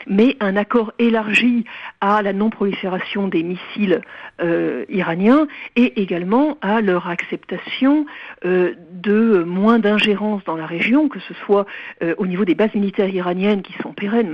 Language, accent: French, French